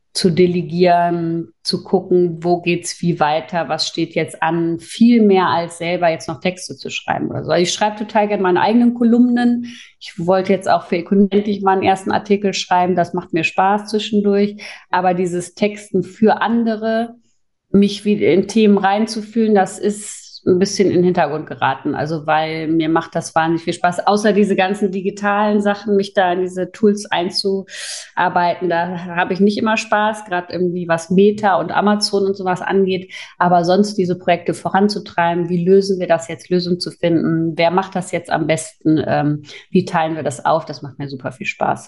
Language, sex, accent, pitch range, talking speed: German, female, German, 165-200 Hz, 185 wpm